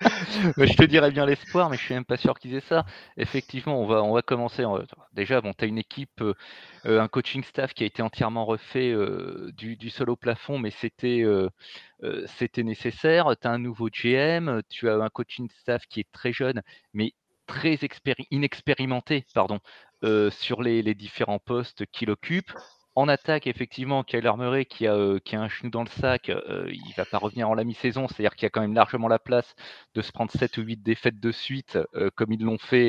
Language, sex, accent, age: French, male, French, 30-49